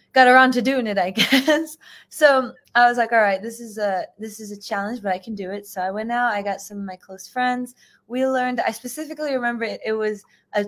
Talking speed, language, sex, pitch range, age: 255 wpm, English, female, 210-270 Hz, 20-39